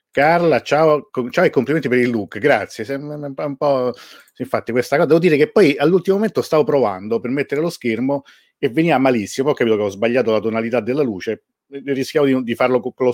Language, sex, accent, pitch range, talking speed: Italian, male, native, 105-140 Hz, 205 wpm